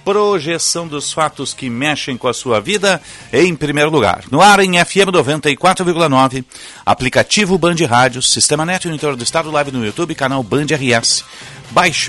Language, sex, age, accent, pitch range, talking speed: Portuguese, male, 50-69, Brazilian, 120-160 Hz, 165 wpm